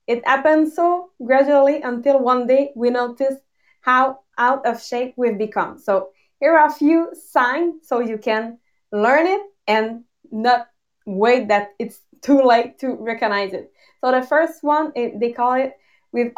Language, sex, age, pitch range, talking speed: English, female, 20-39, 235-280 Hz, 160 wpm